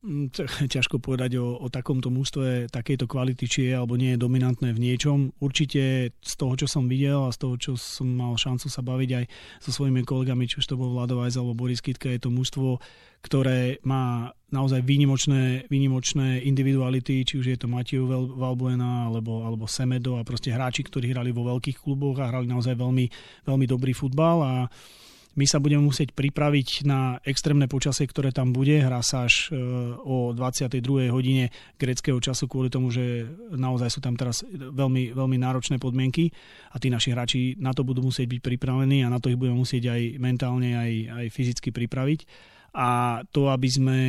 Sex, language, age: male, Slovak, 30-49